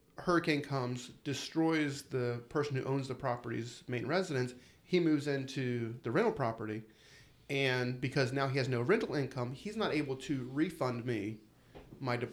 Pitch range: 125-145 Hz